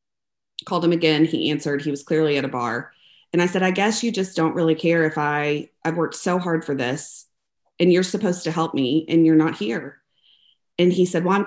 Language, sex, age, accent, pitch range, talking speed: English, female, 30-49, American, 140-165 Hz, 230 wpm